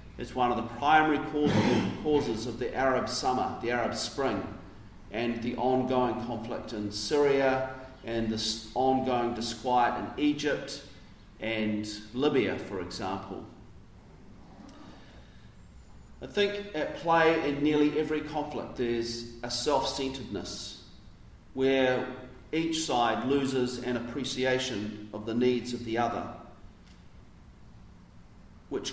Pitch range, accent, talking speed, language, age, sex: 100-130 Hz, Australian, 110 wpm, English, 40-59, male